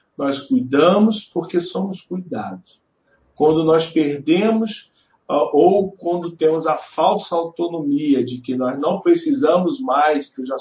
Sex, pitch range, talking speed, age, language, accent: male, 155-205 Hz, 130 wpm, 50-69, Portuguese, Brazilian